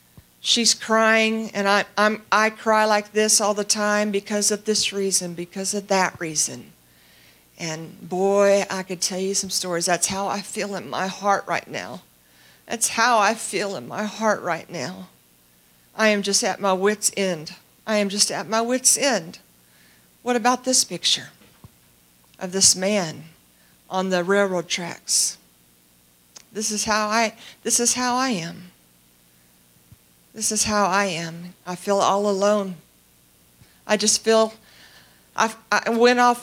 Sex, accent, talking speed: female, American, 155 wpm